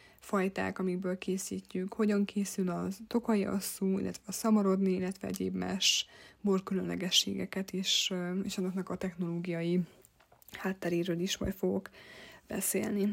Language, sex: Hungarian, female